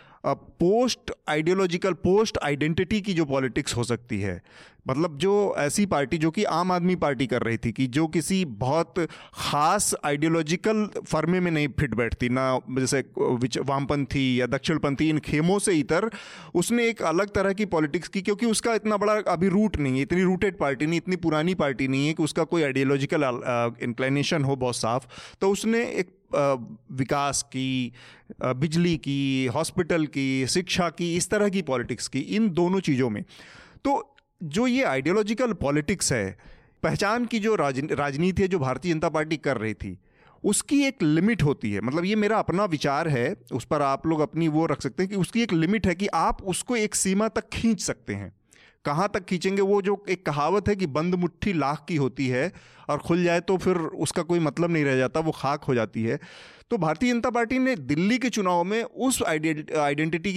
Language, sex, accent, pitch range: Hindi, male, native, 140-195 Hz